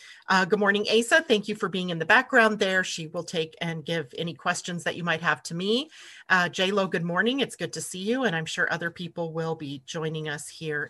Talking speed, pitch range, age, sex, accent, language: 240 wpm, 160-200 Hz, 40-59, female, American, English